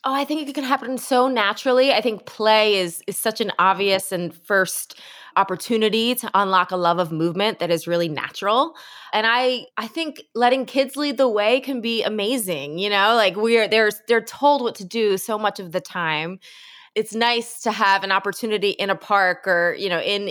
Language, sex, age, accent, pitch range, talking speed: English, female, 20-39, American, 185-235 Hz, 205 wpm